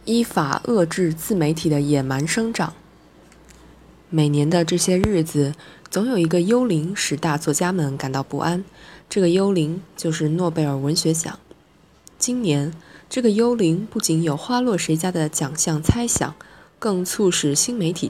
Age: 20-39